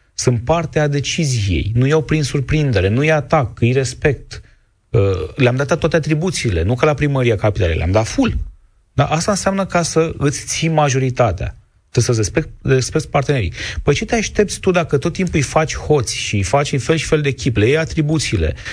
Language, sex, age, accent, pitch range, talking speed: Romanian, male, 30-49, native, 115-155 Hz, 190 wpm